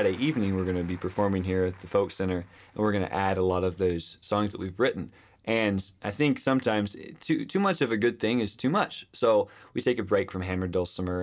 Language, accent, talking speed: English, American, 245 wpm